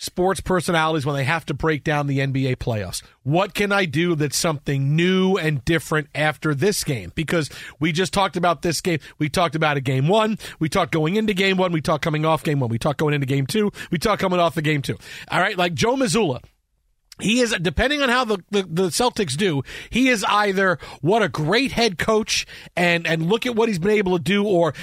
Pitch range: 150-200 Hz